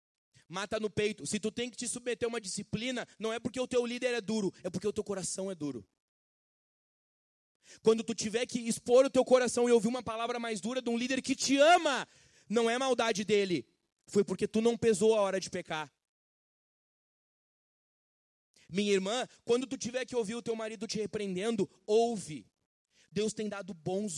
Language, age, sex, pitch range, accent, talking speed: Portuguese, 20-39, male, 145-220 Hz, Brazilian, 190 wpm